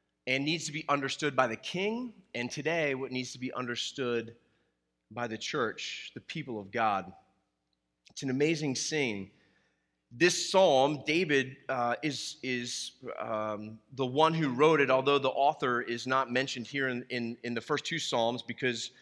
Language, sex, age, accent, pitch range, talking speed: English, male, 30-49, American, 120-150 Hz, 165 wpm